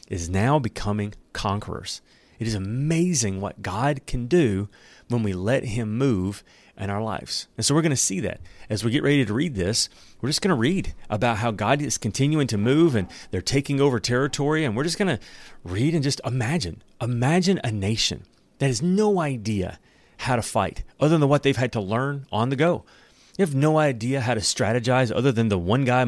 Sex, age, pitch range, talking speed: male, 30-49, 100-140 Hz, 210 wpm